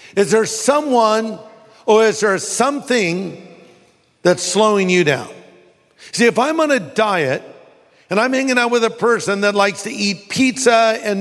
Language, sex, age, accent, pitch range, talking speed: English, male, 50-69, American, 160-220 Hz, 160 wpm